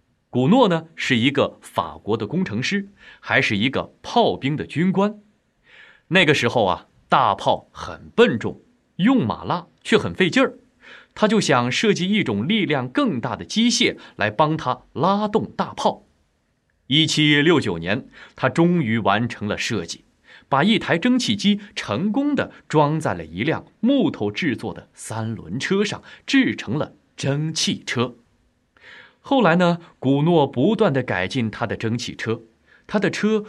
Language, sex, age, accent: Chinese, male, 30-49, native